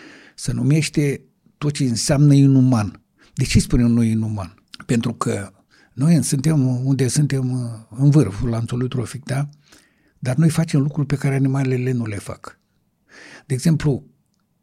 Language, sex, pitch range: Romanian, male, 120-155 Hz